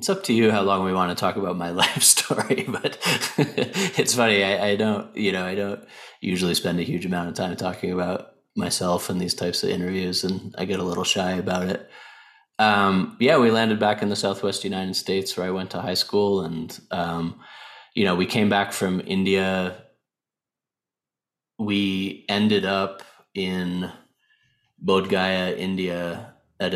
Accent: American